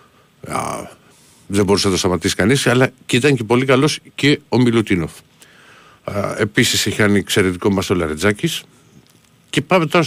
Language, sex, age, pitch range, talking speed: Greek, male, 50-69, 100-135 Hz, 150 wpm